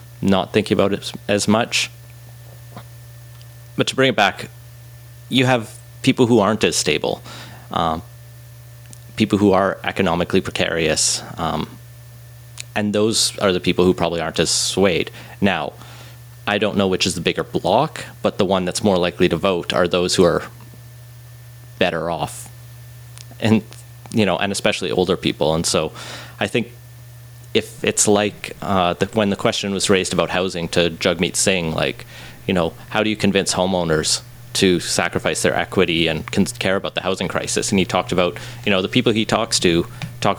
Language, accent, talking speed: English, American, 165 wpm